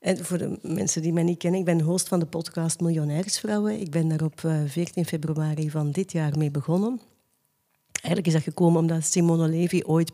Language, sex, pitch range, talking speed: Dutch, female, 155-175 Hz, 200 wpm